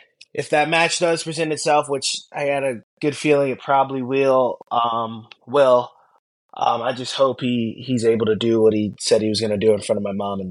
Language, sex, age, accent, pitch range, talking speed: English, male, 20-39, American, 115-140 Hz, 225 wpm